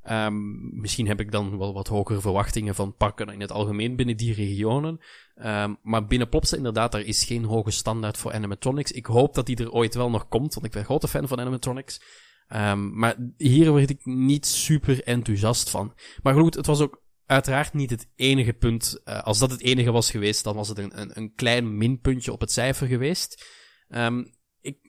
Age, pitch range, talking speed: 20-39, 110-140 Hz, 205 wpm